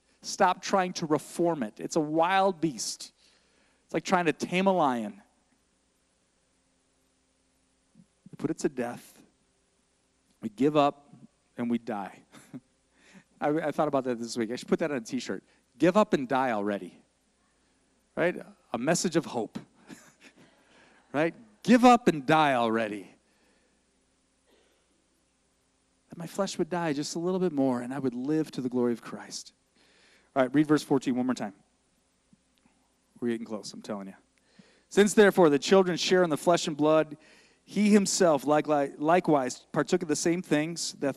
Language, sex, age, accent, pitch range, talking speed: English, male, 40-59, American, 125-180 Hz, 155 wpm